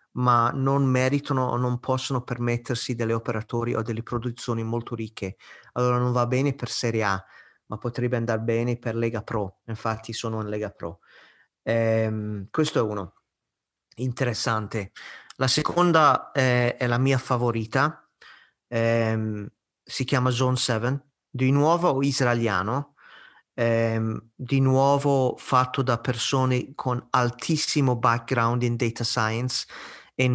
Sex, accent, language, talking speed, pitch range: male, native, Italian, 130 wpm, 115-135 Hz